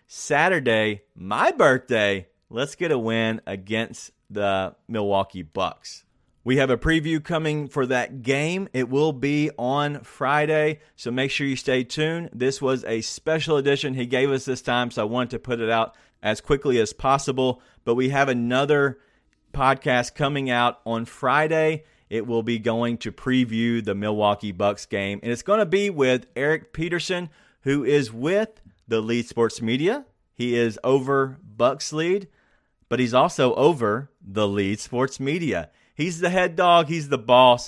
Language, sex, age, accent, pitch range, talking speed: English, male, 30-49, American, 110-140 Hz, 165 wpm